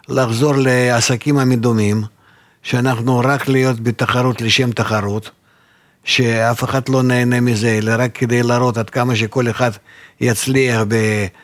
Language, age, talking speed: Hebrew, 50-69, 125 wpm